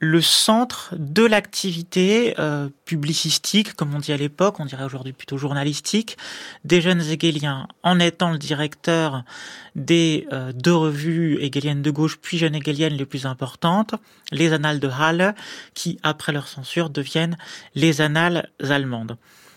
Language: French